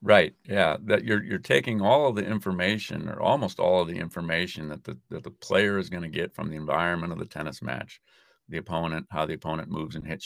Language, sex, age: English, male, 40-59